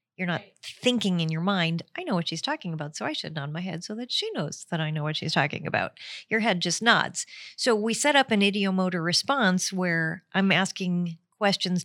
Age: 40-59